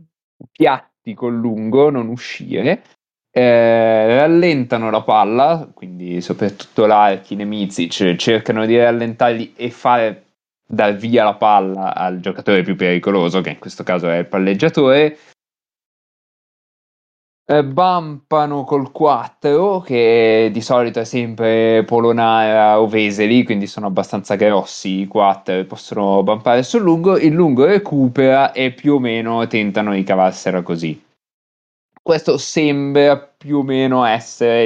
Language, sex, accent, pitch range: Italian, male, native, 100-140 Hz